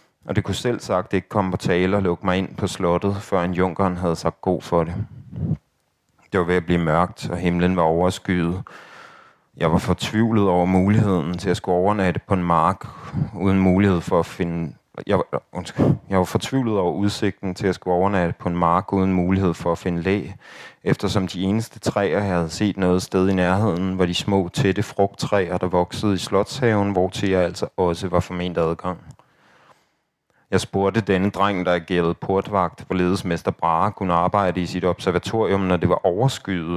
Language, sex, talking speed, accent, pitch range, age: Danish, male, 190 wpm, native, 90-105 Hz, 30-49